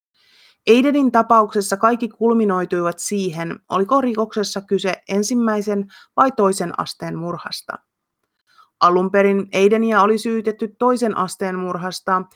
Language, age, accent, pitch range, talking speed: Finnish, 30-49, native, 180-215 Hz, 100 wpm